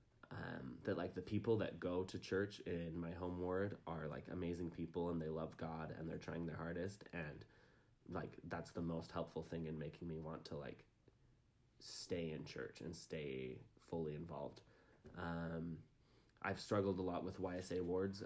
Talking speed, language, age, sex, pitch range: 180 wpm, English, 20-39, male, 80-95 Hz